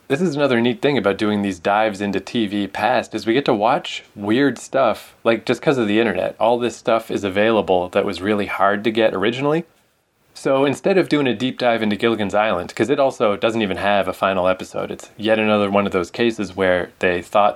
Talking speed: 225 wpm